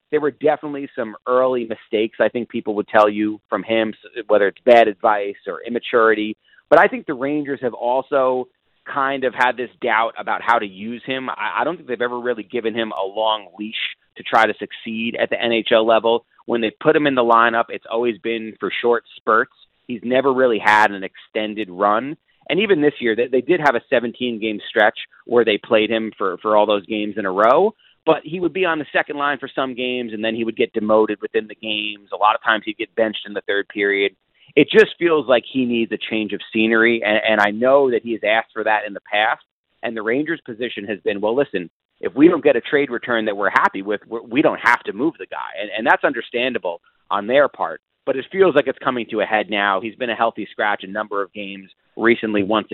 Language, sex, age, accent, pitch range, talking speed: English, male, 30-49, American, 110-130 Hz, 235 wpm